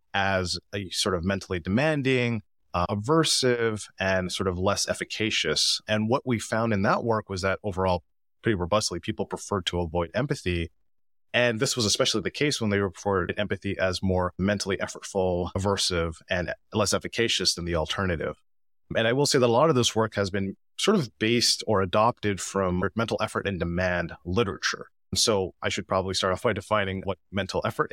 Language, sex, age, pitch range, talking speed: English, male, 30-49, 95-115 Hz, 185 wpm